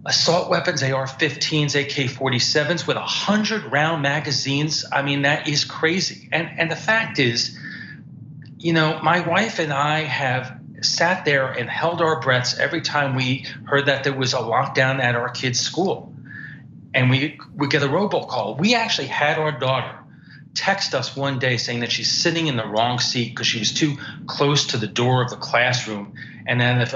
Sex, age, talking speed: male, 40-59, 180 wpm